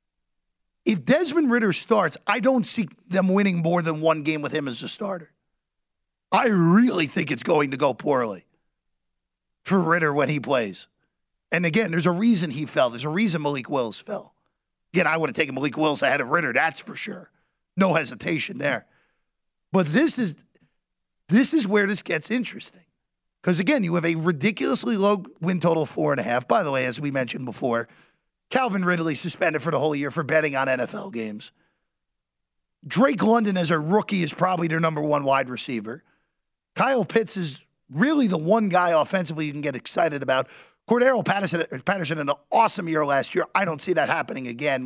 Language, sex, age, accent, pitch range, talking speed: English, male, 40-59, American, 135-205 Hz, 185 wpm